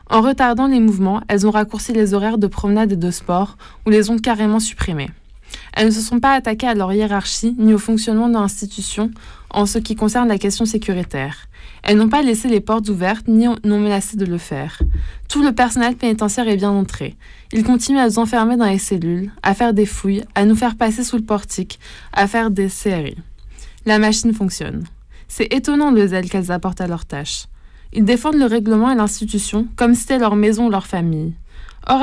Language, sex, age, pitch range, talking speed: French, female, 20-39, 200-235 Hz, 205 wpm